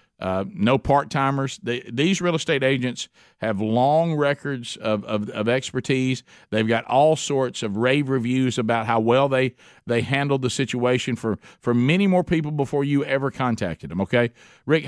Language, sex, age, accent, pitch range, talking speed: English, male, 50-69, American, 120-150 Hz, 165 wpm